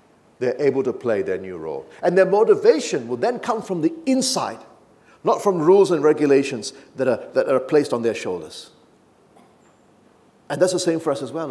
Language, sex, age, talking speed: English, male, 40-59, 195 wpm